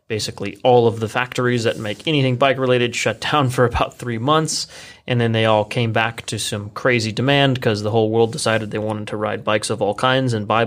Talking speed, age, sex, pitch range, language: 230 wpm, 30-49, male, 105-125 Hz, English